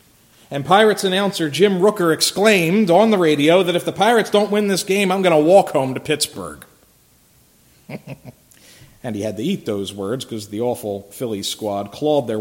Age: 40-59